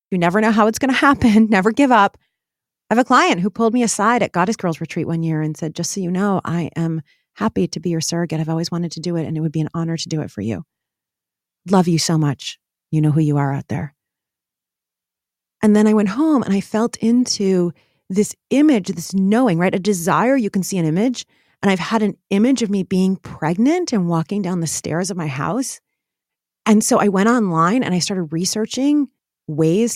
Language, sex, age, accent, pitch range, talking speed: English, female, 30-49, American, 165-230 Hz, 225 wpm